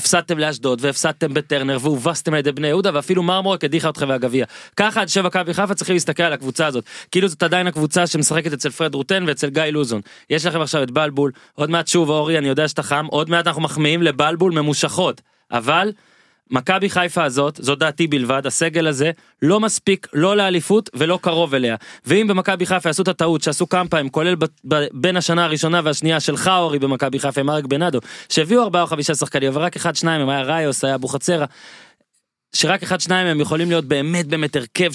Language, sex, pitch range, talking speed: Hebrew, male, 140-175 Hz, 190 wpm